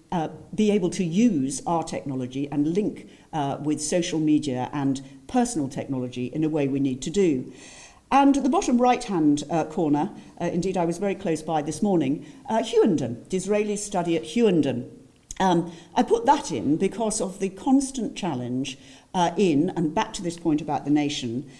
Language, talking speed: English, 185 wpm